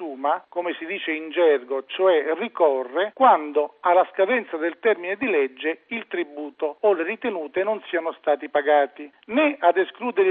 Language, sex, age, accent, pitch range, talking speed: Italian, male, 40-59, native, 160-215 Hz, 150 wpm